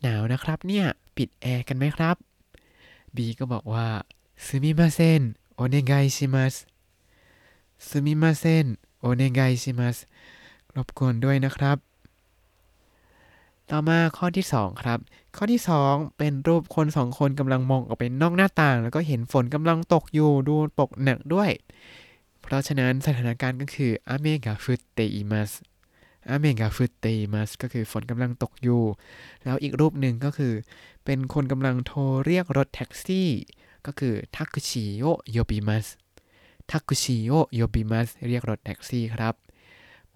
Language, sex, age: Thai, male, 20-39